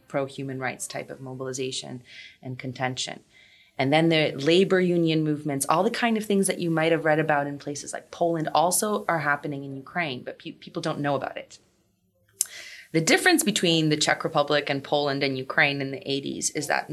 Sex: female